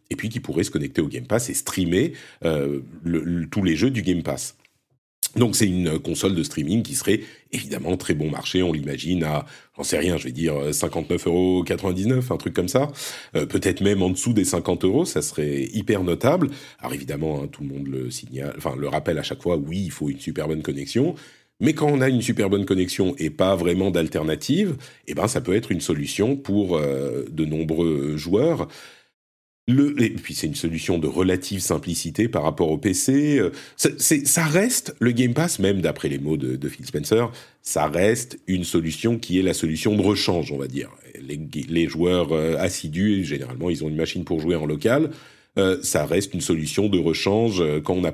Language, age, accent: French, 40-59, French